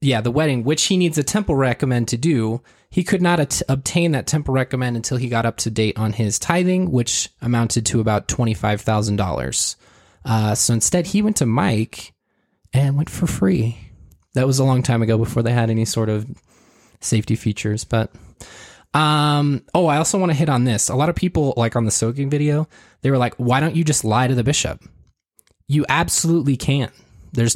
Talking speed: 195 wpm